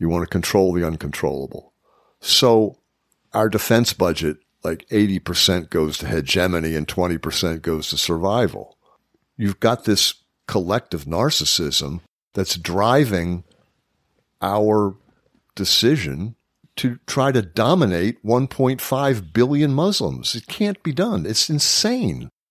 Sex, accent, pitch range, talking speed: male, American, 85-120 Hz, 110 wpm